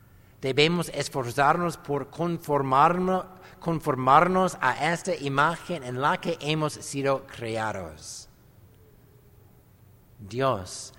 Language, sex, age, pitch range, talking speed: English, male, 60-79, 115-155 Hz, 80 wpm